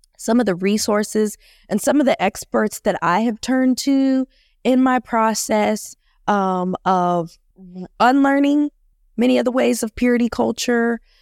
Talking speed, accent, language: 145 wpm, American, English